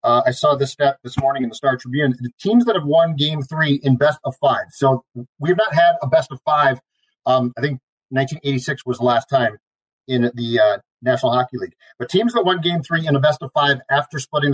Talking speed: 230 wpm